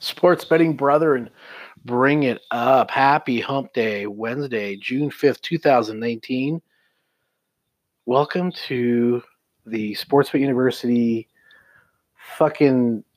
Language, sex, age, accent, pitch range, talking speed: English, male, 30-49, American, 115-140 Hz, 100 wpm